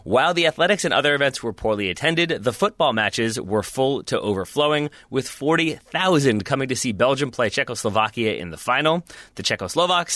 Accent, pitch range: American, 110-150 Hz